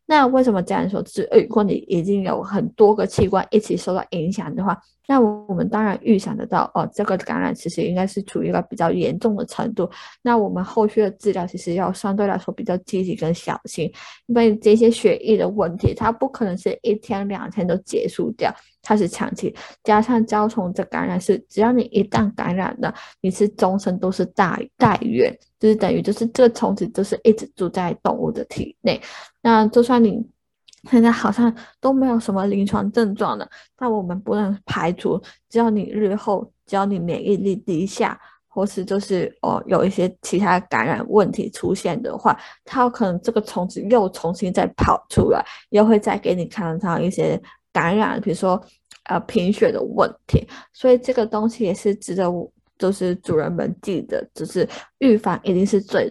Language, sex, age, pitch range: Chinese, female, 10-29, 190-225 Hz